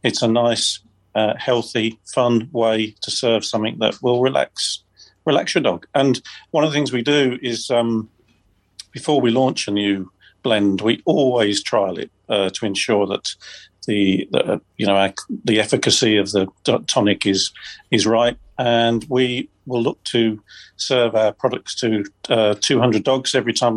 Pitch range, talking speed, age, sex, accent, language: 105-125 Hz, 170 wpm, 50-69, male, British, English